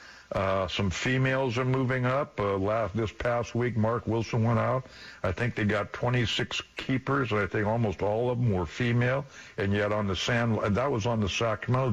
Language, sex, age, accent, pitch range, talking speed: English, male, 60-79, American, 100-125 Hz, 200 wpm